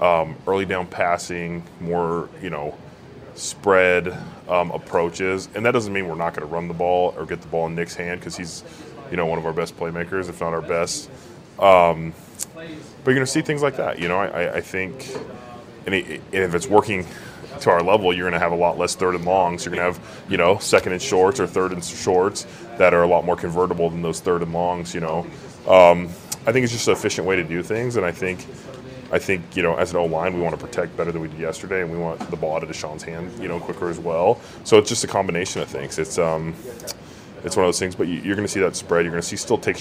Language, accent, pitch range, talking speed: English, American, 85-95 Hz, 260 wpm